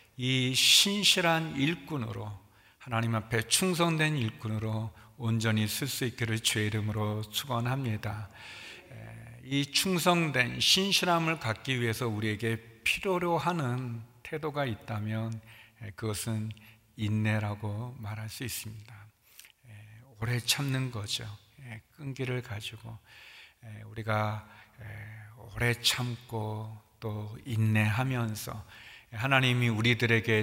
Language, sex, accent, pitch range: Korean, male, native, 110-130 Hz